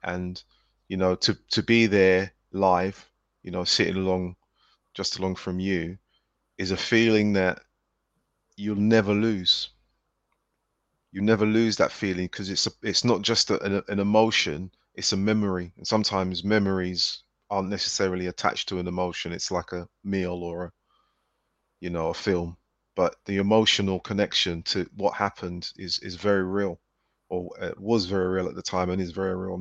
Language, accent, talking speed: English, British, 165 wpm